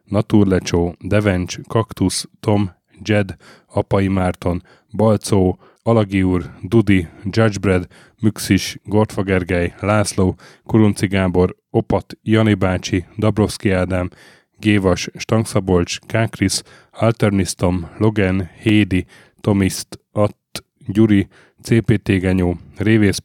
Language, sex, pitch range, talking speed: Hungarian, male, 90-110 Hz, 85 wpm